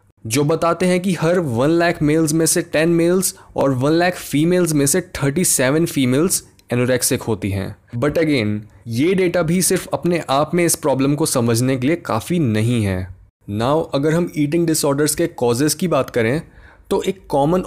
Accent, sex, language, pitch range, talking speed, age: native, male, Hindi, 125-175 Hz, 185 wpm, 20-39